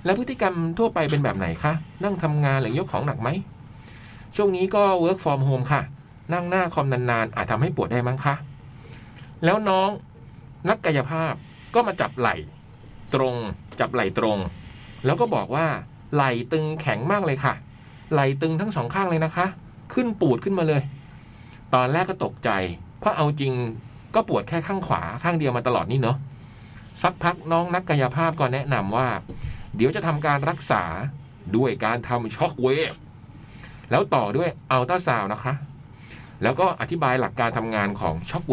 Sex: male